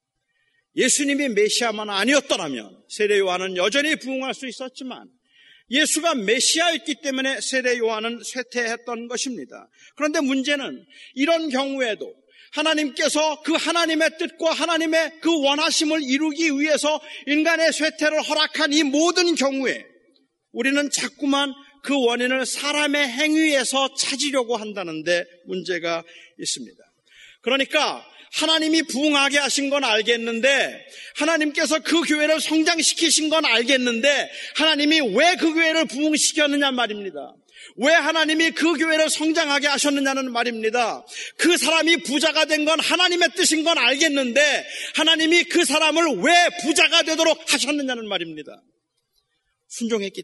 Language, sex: Korean, male